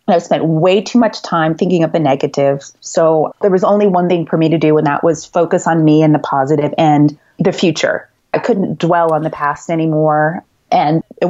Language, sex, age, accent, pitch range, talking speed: English, female, 30-49, American, 150-195 Hz, 220 wpm